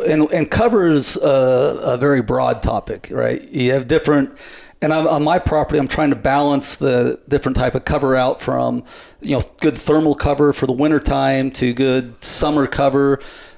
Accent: American